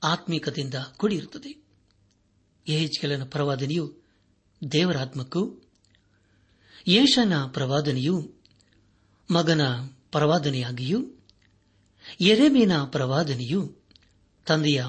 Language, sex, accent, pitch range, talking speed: Kannada, male, native, 100-165 Hz, 50 wpm